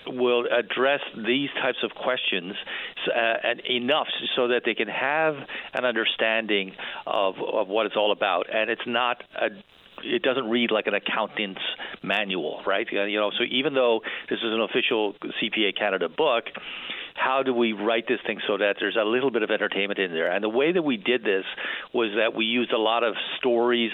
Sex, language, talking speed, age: male, English, 195 wpm, 50-69